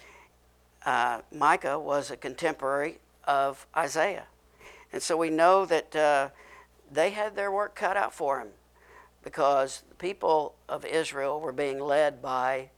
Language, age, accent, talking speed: English, 60-79, American, 140 wpm